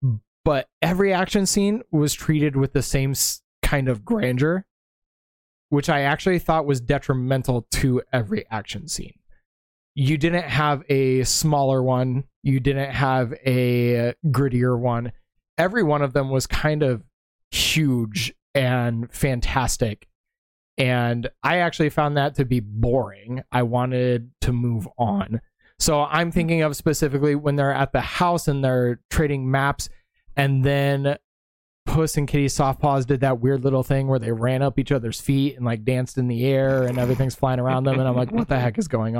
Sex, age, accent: male, 20-39, American